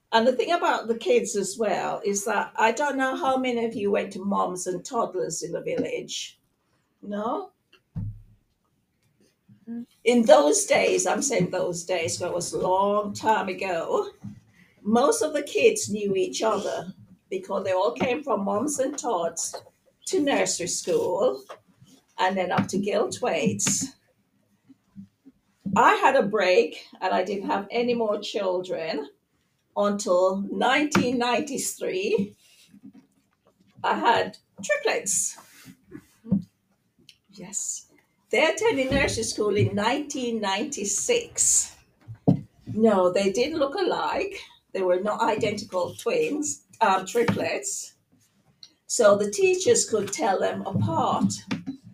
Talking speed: 125 wpm